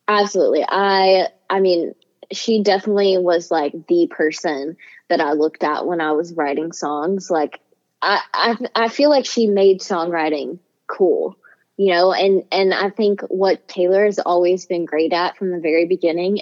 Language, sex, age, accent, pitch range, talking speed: English, female, 20-39, American, 165-200 Hz, 170 wpm